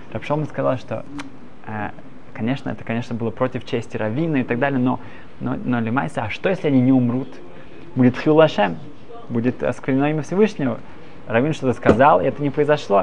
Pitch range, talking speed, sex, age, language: 125-160 Hz, 160 wpm, male, 20-39, Russian